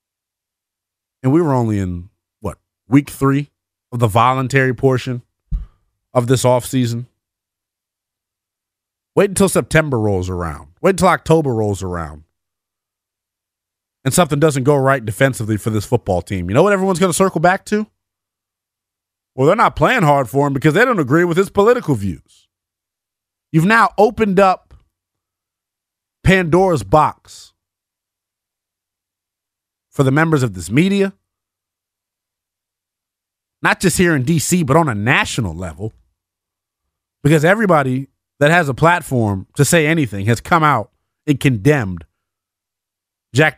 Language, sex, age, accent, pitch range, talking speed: English, male, 30-49, American, 95-145 Hz, 130 wpm